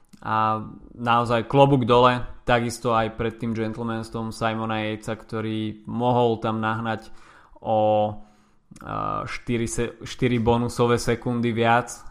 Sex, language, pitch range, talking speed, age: male, Slovak, 110-115 Hz, 110 wpm, 20-39